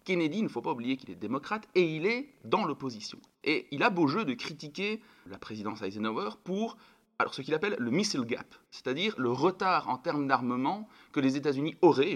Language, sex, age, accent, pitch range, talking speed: French, male, 30-49, French, 120-190 Hz, 210 wpm